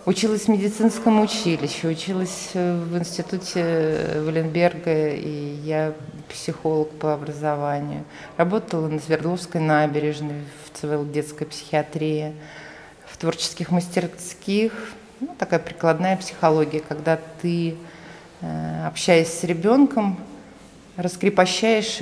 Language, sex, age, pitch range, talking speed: Russian, female, 30-49, 155-185 Hz, 95 wpm